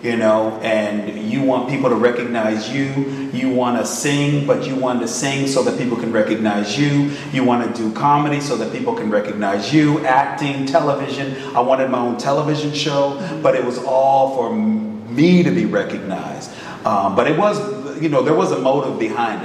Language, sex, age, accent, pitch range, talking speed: Filipino, male, 40-59, American, 110-140 Hz, 195 wpm